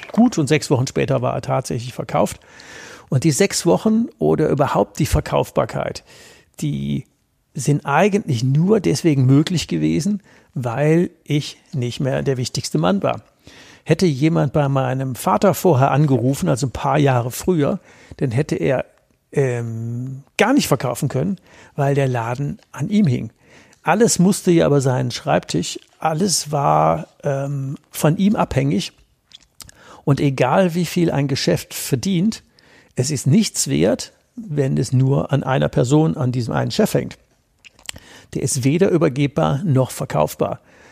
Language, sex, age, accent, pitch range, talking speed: German, male, 60-79, German, 130-170 Hz, 140 wpm